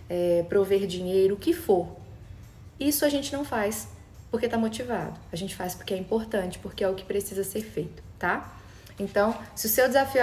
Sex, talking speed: female, 195 wpm